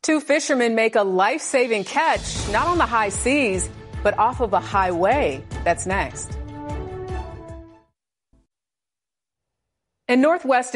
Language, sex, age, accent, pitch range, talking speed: English, female, 40-59, American, 180-240 Hz, 110 wpm